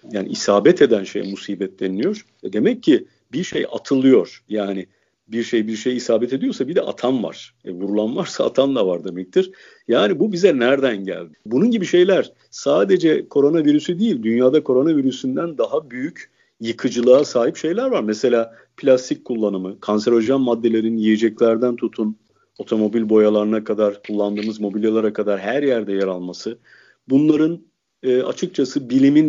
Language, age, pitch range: Turkish, 50-69, 105-150 Hz